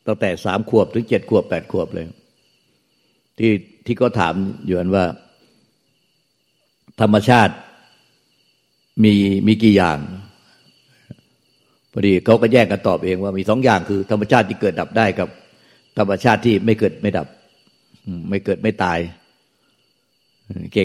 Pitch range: 95-110 Hz